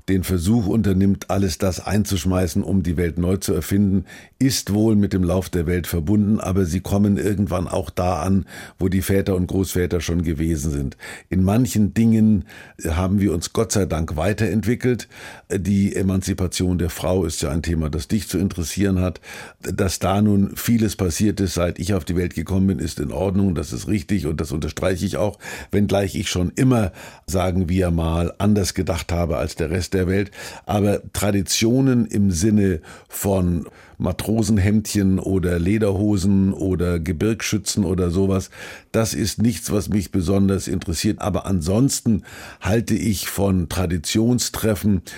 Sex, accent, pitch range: male, German, 90-105 Hz